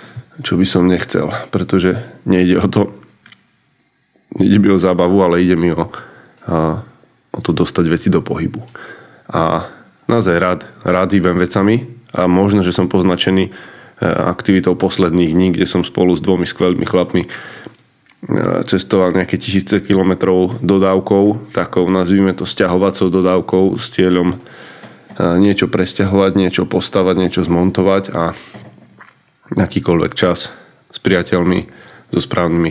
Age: 20-39